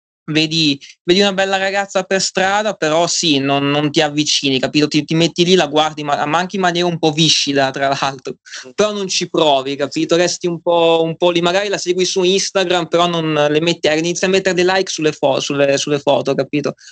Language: Italian